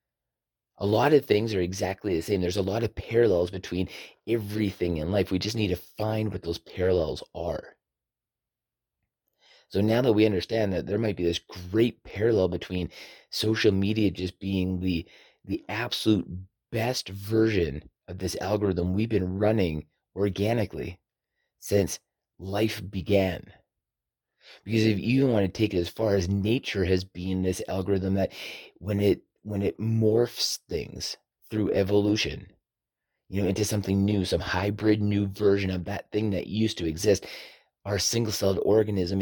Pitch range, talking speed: 95-110 Hz, 155 wpm